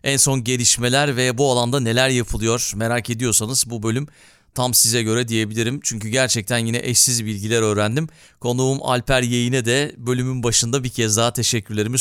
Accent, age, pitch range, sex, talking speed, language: native, 40-59, 115-140 Hz, male, 160 wpm, Turkish